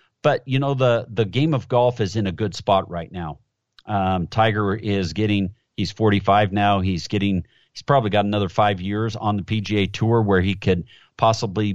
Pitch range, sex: 95-115 Hz, male